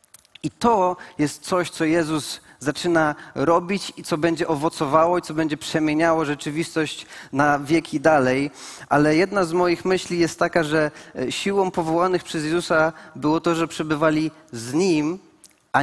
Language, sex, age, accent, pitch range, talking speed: Polish, male, 30-49, native, 145-175 Hz, 150 wpm